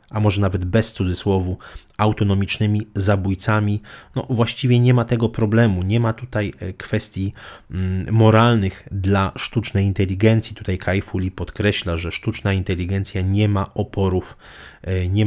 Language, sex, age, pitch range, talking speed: Polish, male, 30-49, 95-110 Hz, 125 wpm